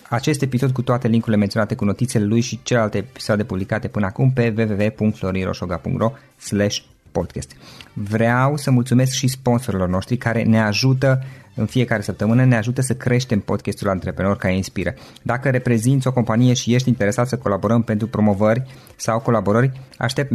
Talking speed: 150 wpm